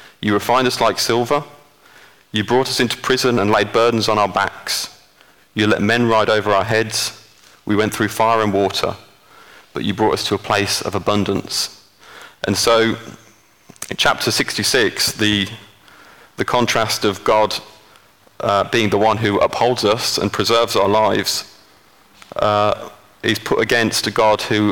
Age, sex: 30-49, male